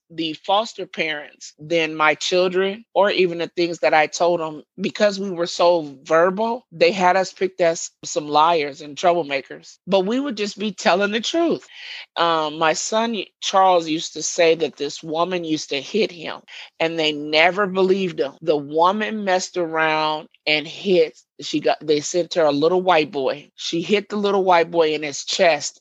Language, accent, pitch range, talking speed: English, American, 150-175 Hz, 185 wpm